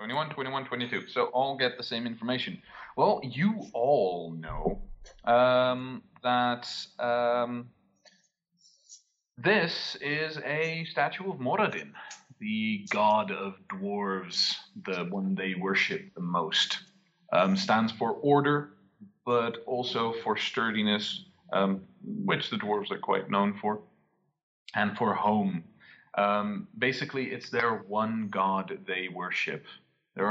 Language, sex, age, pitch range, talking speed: English, male, 30-49, 100-165 Hz, 120 wpm